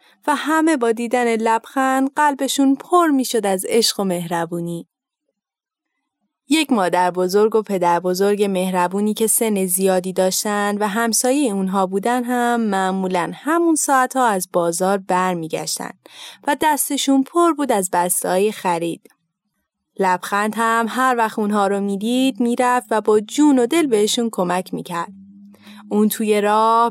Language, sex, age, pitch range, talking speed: Persian, female, 20-39, 190-255 Hz, 140 wpm